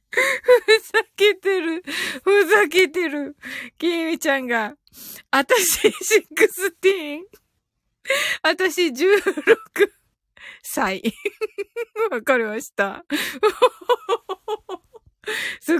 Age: 20-39